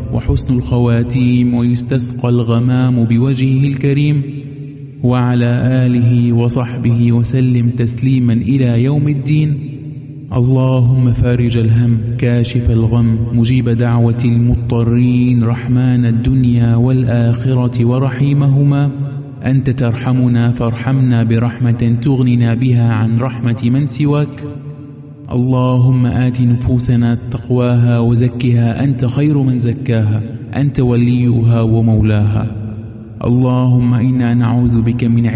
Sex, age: male, 20-39